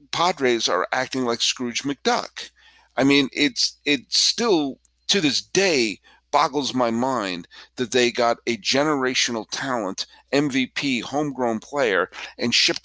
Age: 50-69